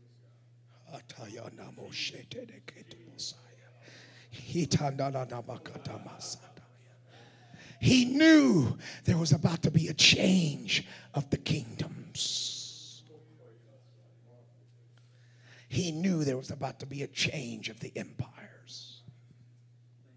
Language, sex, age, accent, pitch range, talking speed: English, male, 50-69, American, 120-145 Hz, 70 wpm